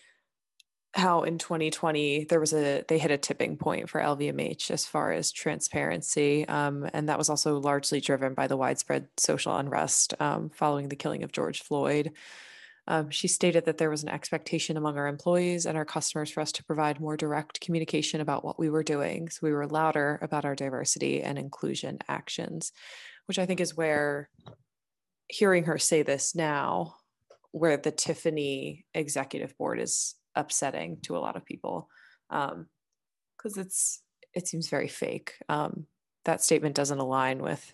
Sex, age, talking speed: female, 20-39, 170 wpm